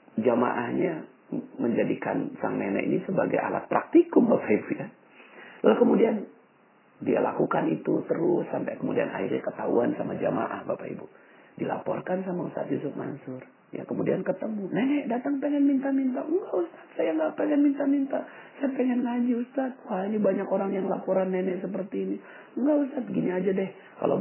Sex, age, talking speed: male, 40-59, 160 wpm